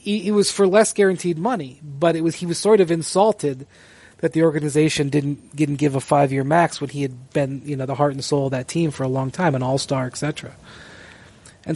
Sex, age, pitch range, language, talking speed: male, 30-49, 130-155 Hz, English, 235 wpm